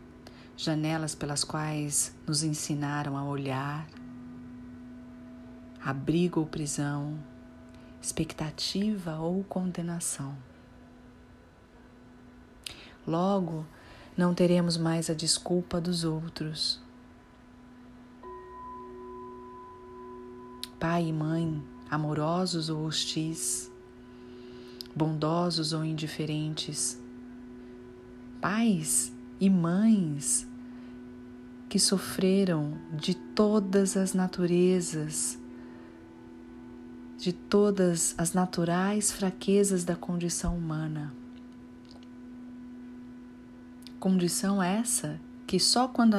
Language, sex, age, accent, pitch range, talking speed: Portuguese, female, 40-59, Brazilian, 125-180 Hz, 70 wpm